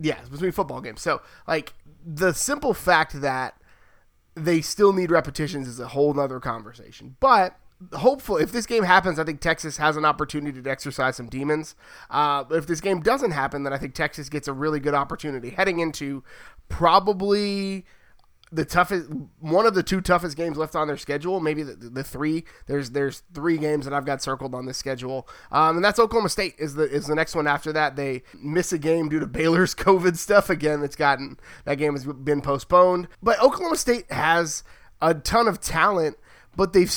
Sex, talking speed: male, 195 wpm